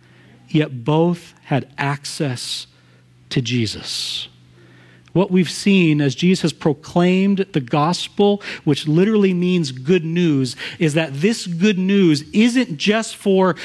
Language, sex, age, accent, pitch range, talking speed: English, male, 40-59, American, 130-195 Hz, 120 wpm